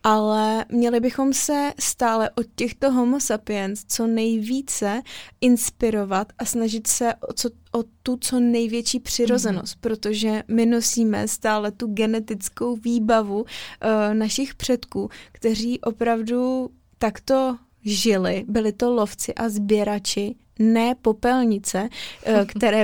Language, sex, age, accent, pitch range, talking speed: Czech, female, 20-39, native, 215-240 Hz, 110 wpm